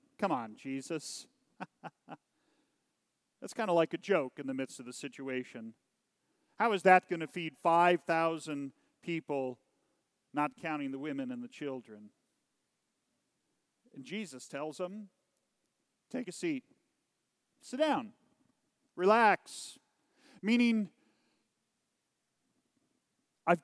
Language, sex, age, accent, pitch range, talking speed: English, male, 40-59, American, 150-205 Hz, 105 wpm